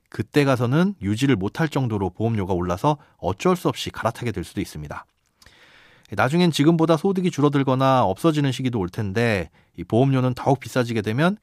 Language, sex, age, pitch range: Korean, male, 30-49, 105-150 Hz